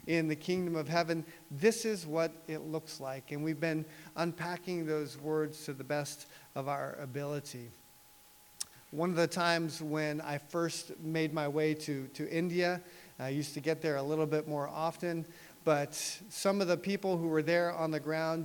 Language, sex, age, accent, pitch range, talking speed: English, male, 50-69, American, 150-180 Hz, 185 wpm